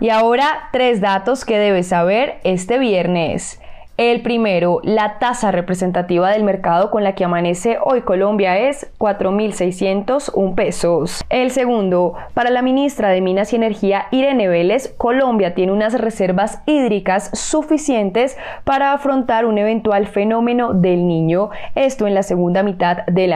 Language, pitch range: Spanish, 190-245 Hz